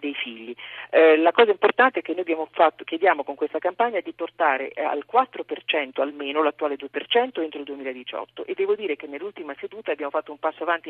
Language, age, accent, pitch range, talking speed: Italian, 40-59, native, 155-220 Hz, 195 wpm